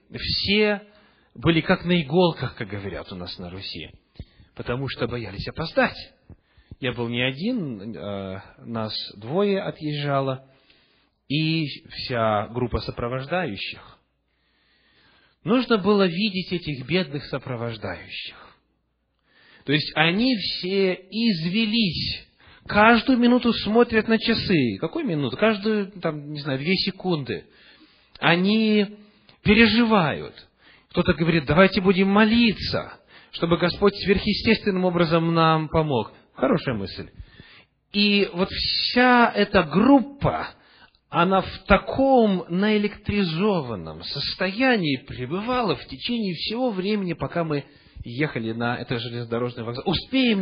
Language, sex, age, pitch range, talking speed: English, male, 30-49, 125-205 Hz, 105 wpm